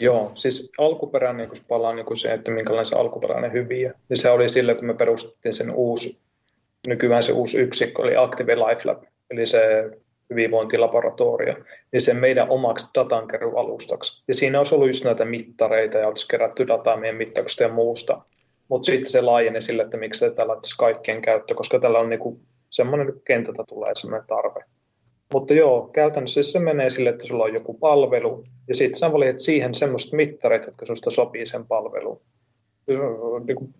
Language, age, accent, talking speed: Finnish, 30-49, native, 175 wpm